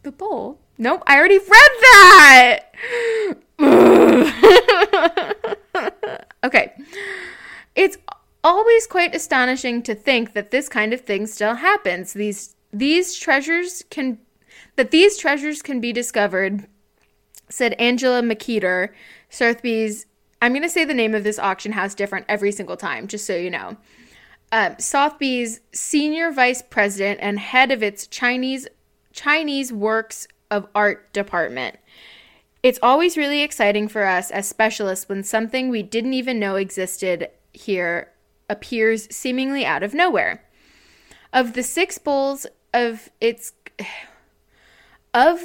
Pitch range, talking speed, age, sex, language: 210-300 Hz, 125 wpm, 20-39, female, English